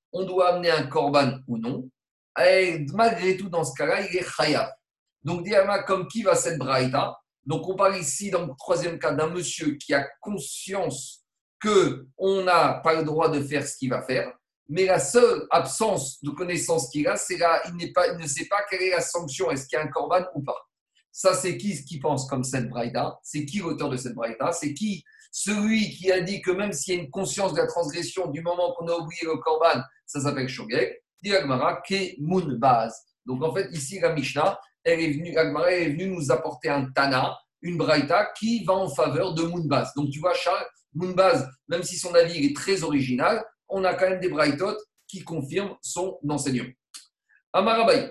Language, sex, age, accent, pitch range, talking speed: French, male, 50-69, French, 145-190 Hz, 205 wpm